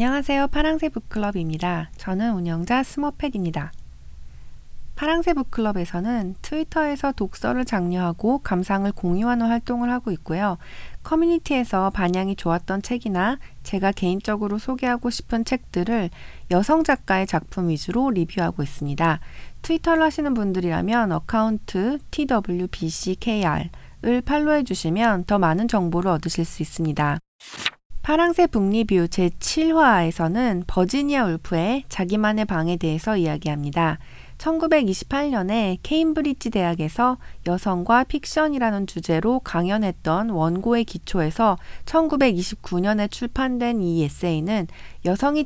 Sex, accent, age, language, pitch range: female, native, 40-59, Korean, 175-250 Hz